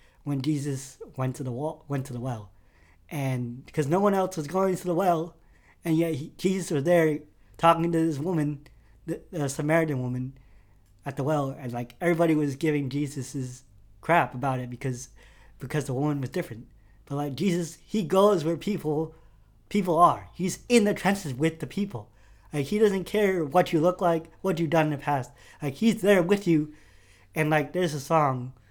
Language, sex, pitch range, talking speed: English, male, 130-170 Hz, 190 wpm